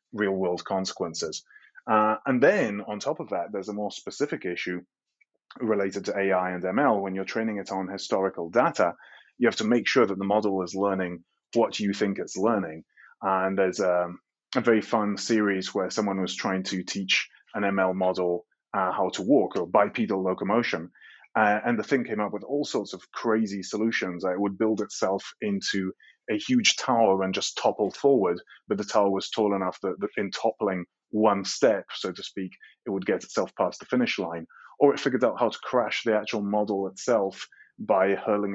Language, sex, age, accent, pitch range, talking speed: English, male, 30-49, British, 95-110 Hz, 200 wpm